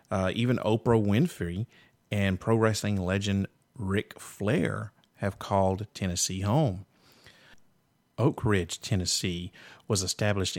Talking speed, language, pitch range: 110 wpm, English, 90-115 Hz